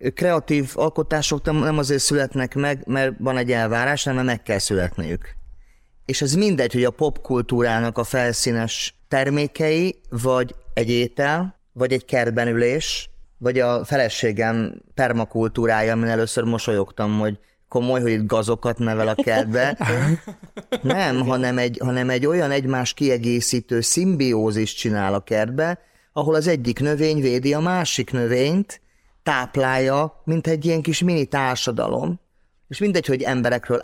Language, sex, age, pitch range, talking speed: Hungarian, male, 30-49, 115-145 Hz, 135 wpm